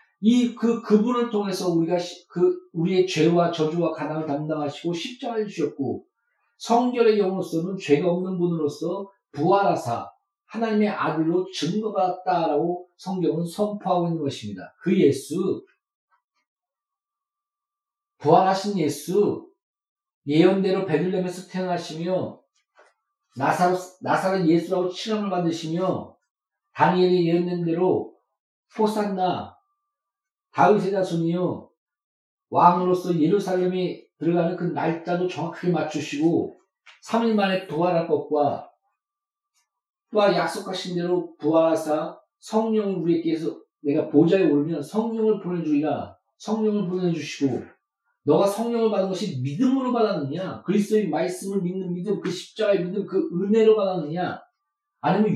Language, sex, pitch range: Korean, male, 170-220 Hz